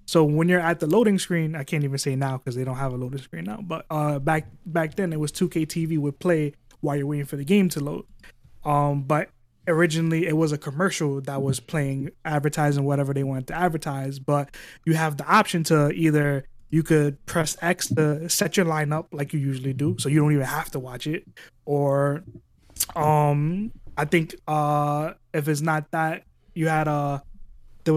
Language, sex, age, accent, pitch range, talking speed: English, male, 20-39, American, 145-165 Hz, 205 wpm